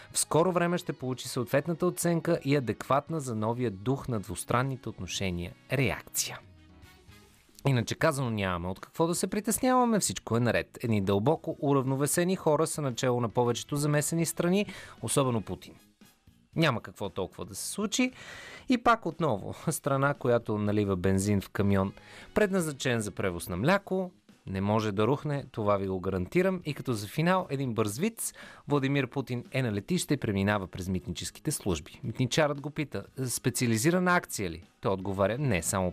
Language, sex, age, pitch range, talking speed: Bulgarian, male, 30-49, 105-160 Hz, 160 wpm